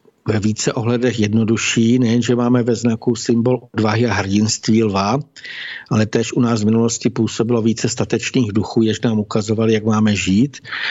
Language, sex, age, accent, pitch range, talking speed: Czech, male, 60-79, native, 110-125 Hz, 160 wpm